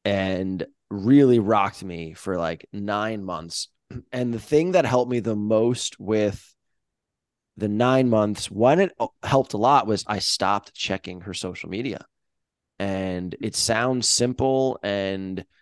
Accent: American